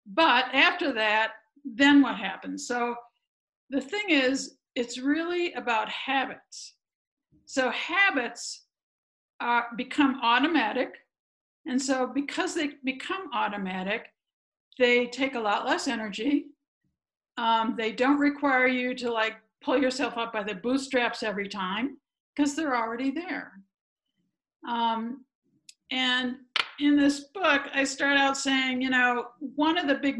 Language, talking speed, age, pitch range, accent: English, 125 wpm, 60-79, 230-290 Hz, American